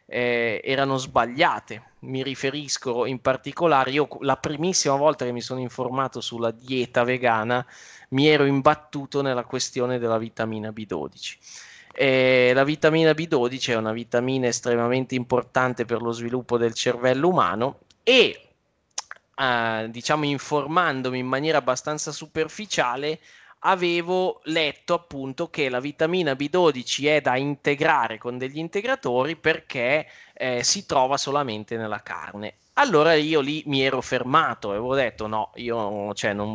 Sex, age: male, 20-39